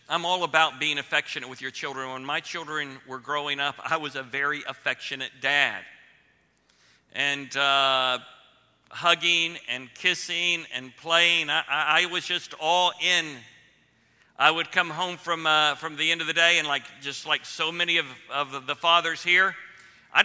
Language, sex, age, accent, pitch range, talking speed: English, male, 50-69, American, 140-170 Hz, 170 wpm